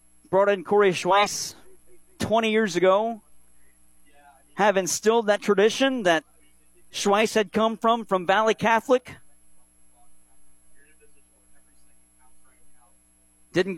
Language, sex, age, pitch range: English, male, 40-59, 150-210 Hz